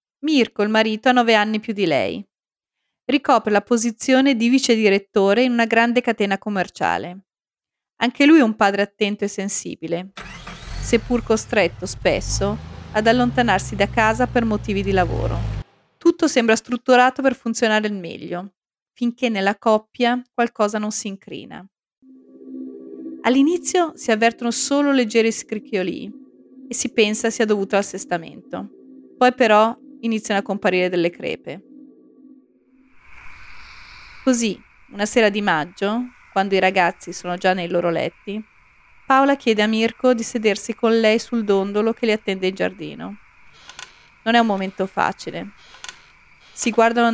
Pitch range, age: 195-250 Hz, 30-49